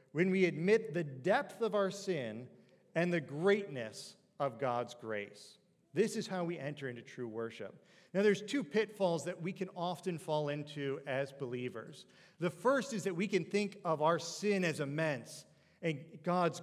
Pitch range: 140-185 Hz